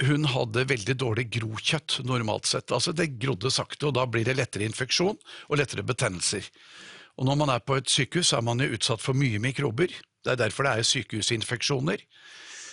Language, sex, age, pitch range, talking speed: English, male, 50-69, 130-175 Hz, 190 wpm